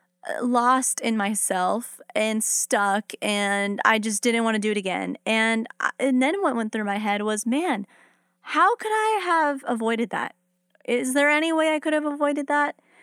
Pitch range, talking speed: 205-250 Hz, 185 wpm